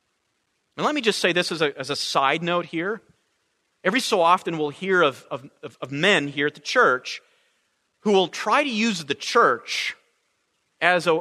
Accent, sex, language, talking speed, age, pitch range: American, male, English, 185 wpm, 40-59, 150-205 Hz